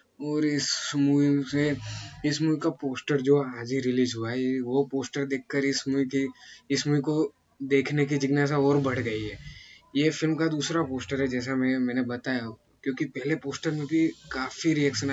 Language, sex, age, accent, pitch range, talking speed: Hindi, male, 20-39, native, 130-145 Hz, 185 wpm